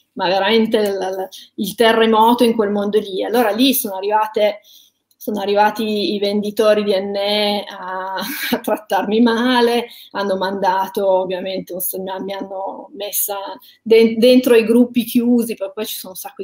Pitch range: 200-240 Hz